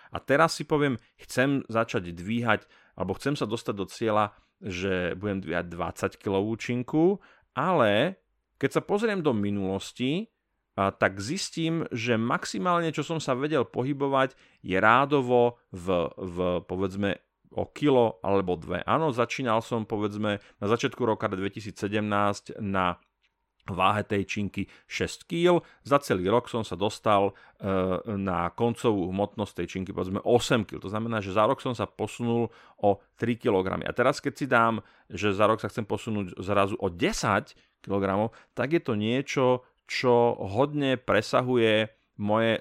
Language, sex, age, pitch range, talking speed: Slovak, male, 30-49, 100-130 Hz, 150 wpm